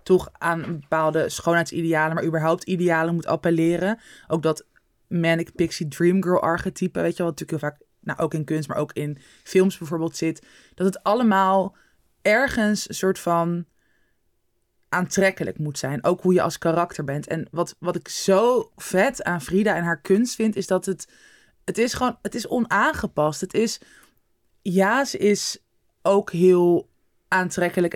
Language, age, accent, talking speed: Dutch, 20-39, Dutch, 165 wpm